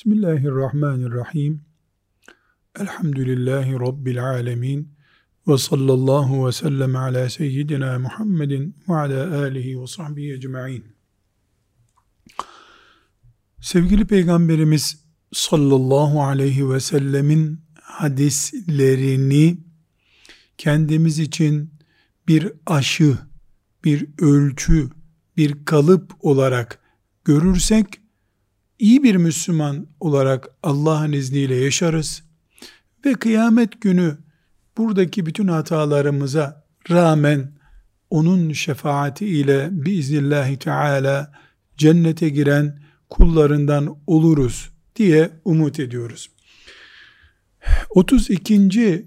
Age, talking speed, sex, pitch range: 50-69, 75 wpm, male, 135-170 Hz